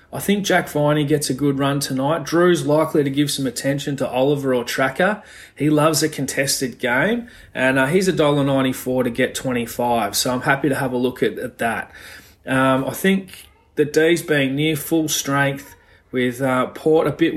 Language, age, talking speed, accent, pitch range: English, 30-49, 195 wpm, Australian, 125-145 Hz